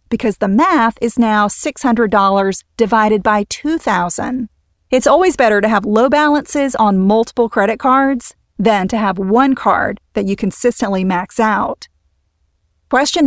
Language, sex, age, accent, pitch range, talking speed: English, female, 40-59, American, 205-255 Hz, 140 wpm